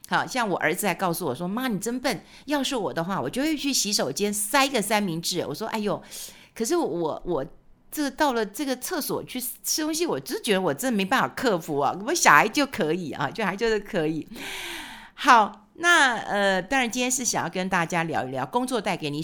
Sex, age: female, 50-69